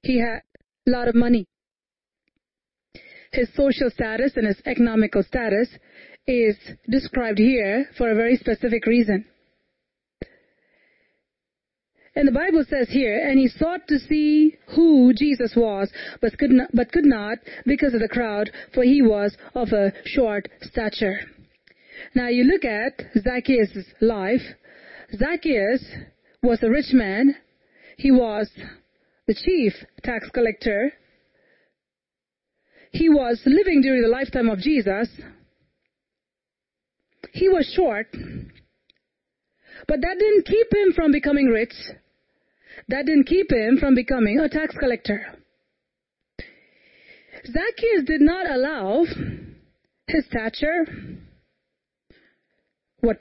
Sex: female